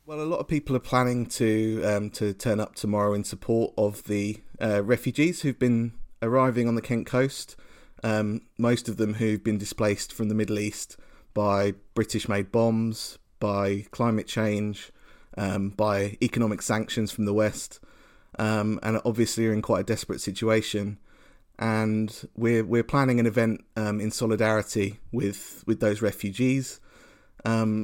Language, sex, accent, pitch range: English, male, British, 105-120 Hz